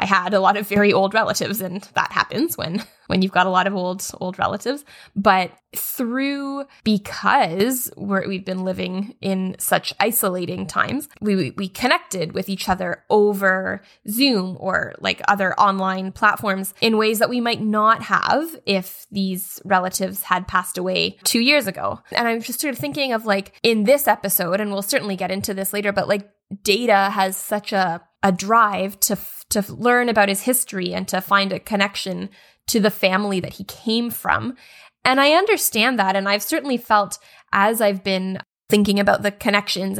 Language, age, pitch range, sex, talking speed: English, 10-29, 185-220 Hz, female, 180 wpm